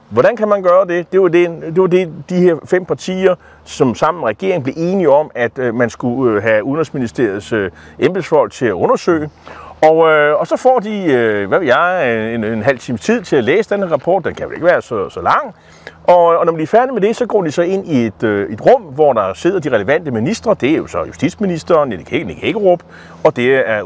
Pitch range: 140-200 Hz